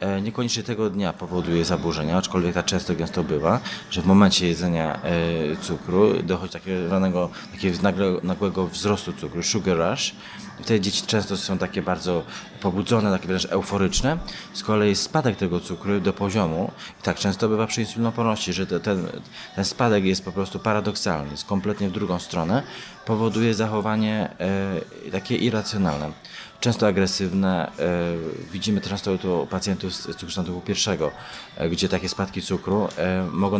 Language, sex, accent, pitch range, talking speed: Polish, male, native, 95-110 Hz, 140 wpm